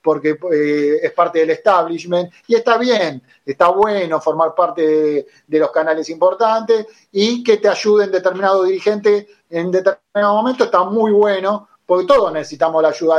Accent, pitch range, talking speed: Argentinian, 165-205 Hz, 160 wpm